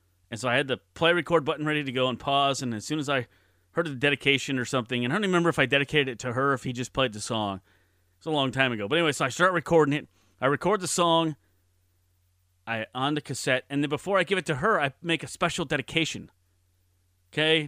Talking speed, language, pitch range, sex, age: 255 wpm, English, 100-155 Hz, male, 30-49